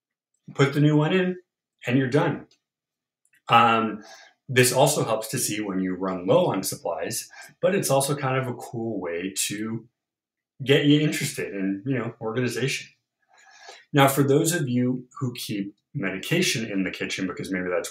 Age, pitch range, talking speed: 30-49, 95-140 Hz, 170 wpm